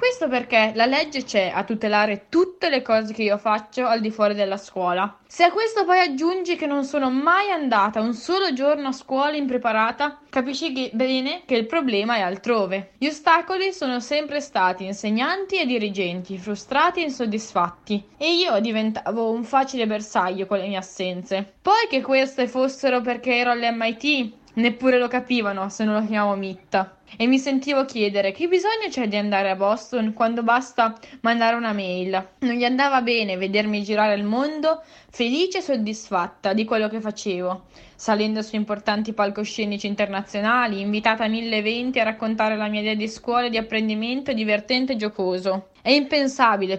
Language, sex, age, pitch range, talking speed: Italian, female, 20-39, 210-260 Hz, 170 wpm